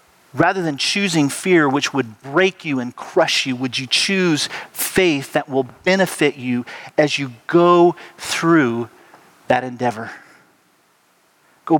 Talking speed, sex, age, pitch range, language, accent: 130 wpm, male, 40-59, 140-190 Hz, English, American